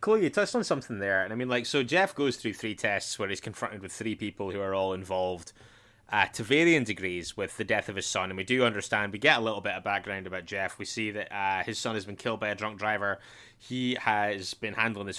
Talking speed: 265 wpm